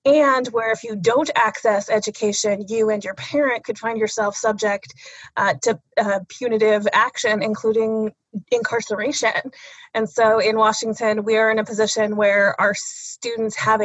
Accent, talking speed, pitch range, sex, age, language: American, 150 wpm, 210-235 Hz, female, 20-39, English